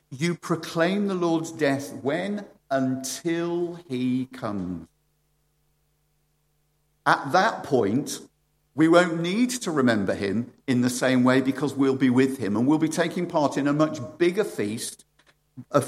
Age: 50-69